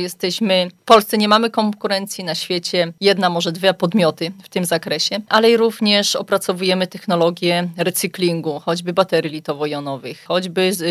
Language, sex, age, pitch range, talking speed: Polish, female, 20-39, 170-195 Hz, 130 wpm